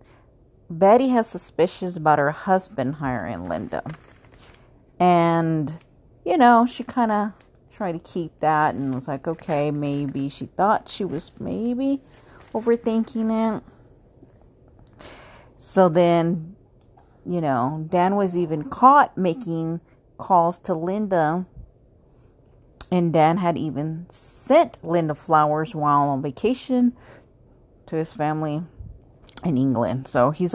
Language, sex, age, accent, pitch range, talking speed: English, female, 40-59, American, 130-185 Hz, 115 wpm